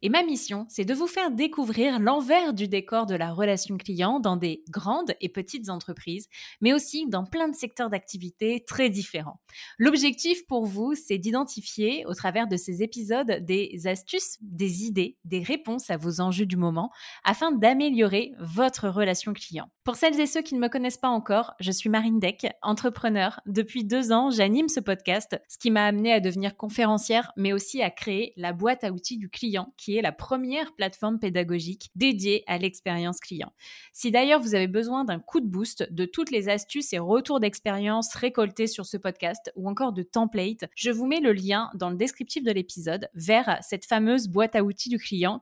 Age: 20-39